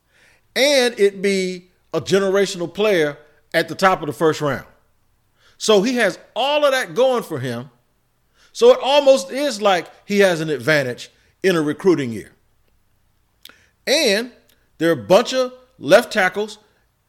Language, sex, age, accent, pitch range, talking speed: English, male, 40-59, American, 135-215 Hz, 150 wpm